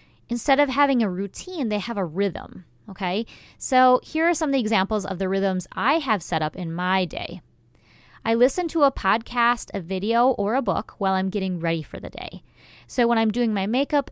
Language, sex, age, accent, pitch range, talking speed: English, female, 20-39, American, 180-235 Hz, 215 wpm